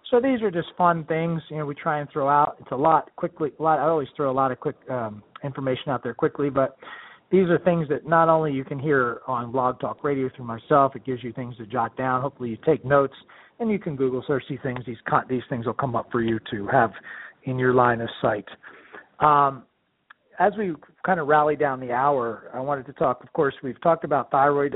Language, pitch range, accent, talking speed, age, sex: English, 125-150 Hz, American, 240 wpm, 40-59, male